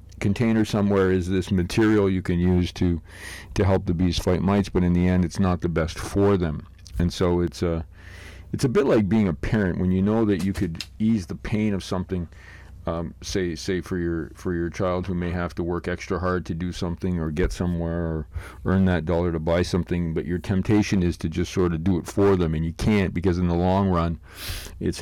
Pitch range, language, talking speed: 85-95 Hz, English, 230 wpm